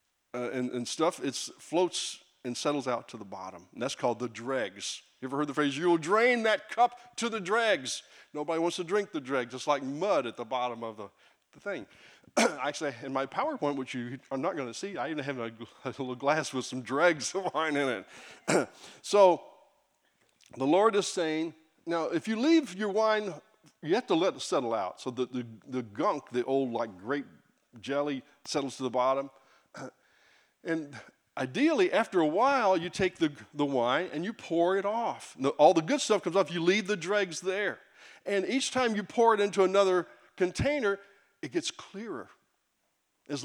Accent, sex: American, male